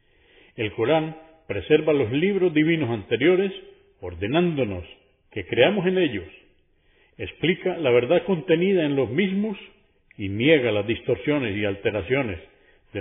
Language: Spanish